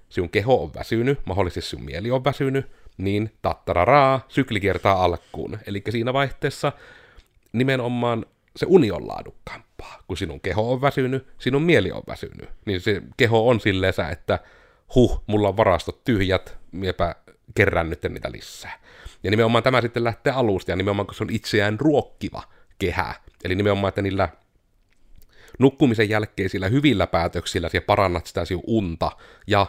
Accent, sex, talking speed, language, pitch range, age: native, male, 150 wpm, Finnish, 90-115 Hz, 30-49